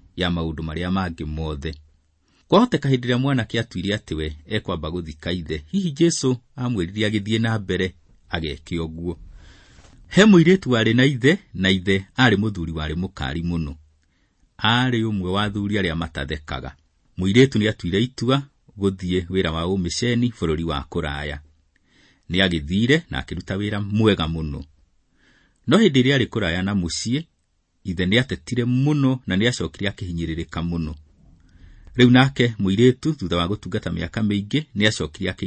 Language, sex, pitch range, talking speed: English, male, 85-125 Hz, 120 wpm